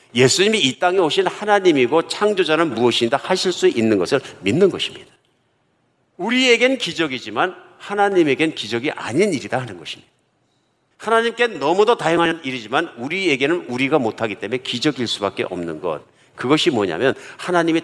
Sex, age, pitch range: male, 50-69, 120-175 Hz